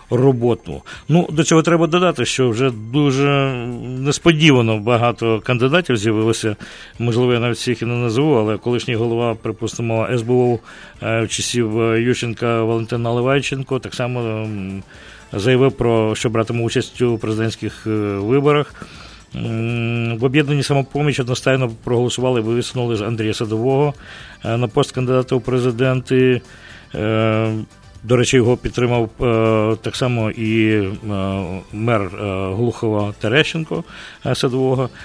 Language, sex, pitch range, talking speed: English, male, 115-135 Hz, 110 wpm